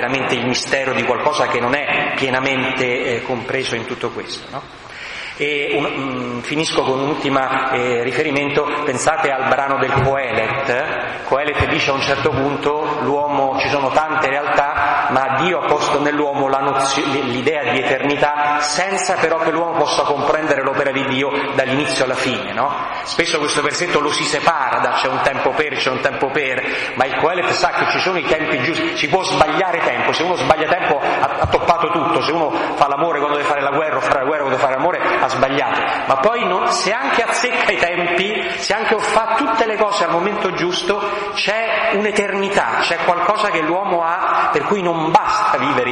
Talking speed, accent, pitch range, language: 190 wpm, native, 130-170 Hz, Italian